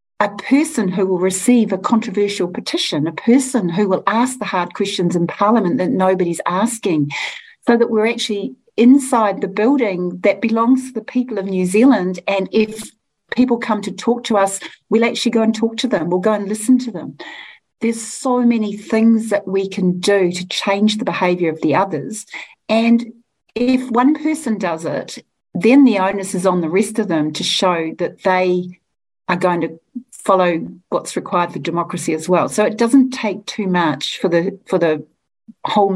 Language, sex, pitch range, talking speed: English, female, 180-230 Hz, 185 wpm